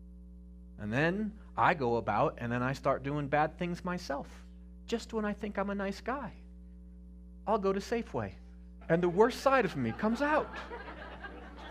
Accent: American